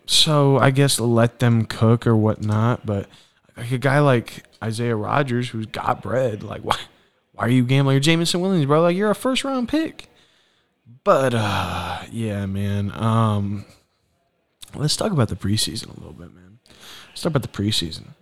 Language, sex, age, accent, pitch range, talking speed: English, male, 20-39, American, 100-145 Hz, 175 wpm